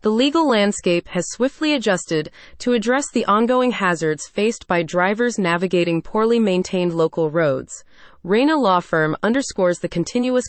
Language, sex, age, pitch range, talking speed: English, female, 30-49, 170-230 Hz, 145 wpm